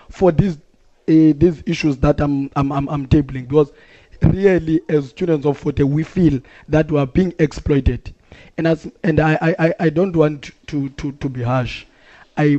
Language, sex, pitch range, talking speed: English, male, 145-180 Hz, 180 wpm